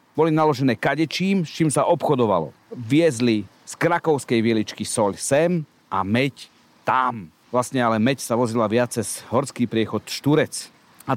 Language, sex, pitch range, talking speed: Slovak, male, 115-165 Hz, 145 wpm